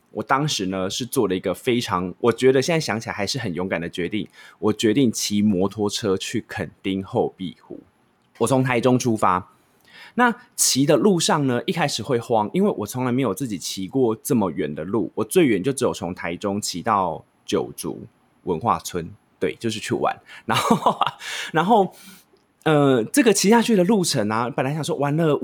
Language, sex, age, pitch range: Chinese, male, 20-39, 110-160 Hz